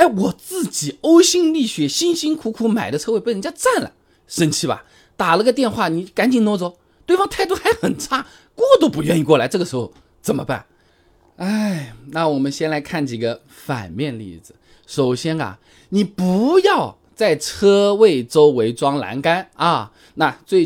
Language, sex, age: Chinese, male, 20-39